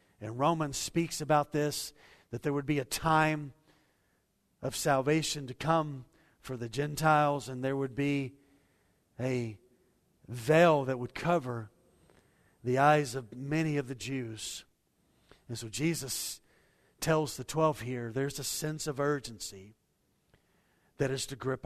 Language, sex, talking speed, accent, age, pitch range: English, male, 140 wpm, American, 50-69, 130-165 Hz